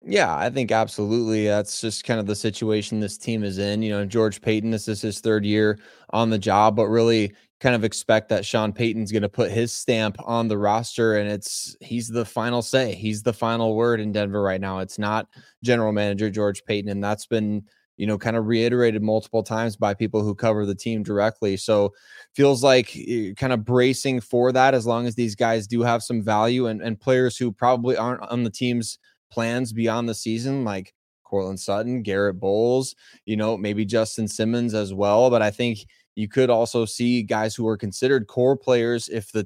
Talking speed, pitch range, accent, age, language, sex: 205 wpm, 105-120 Hz, American, 20-39, English, male